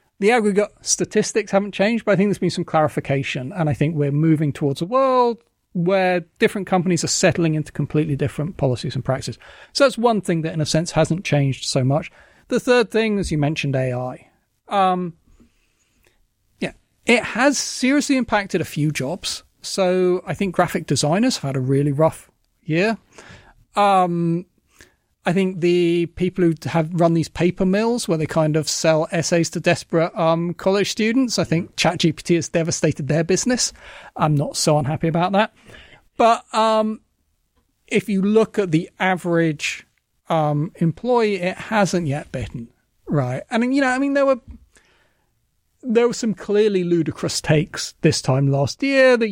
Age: 40-59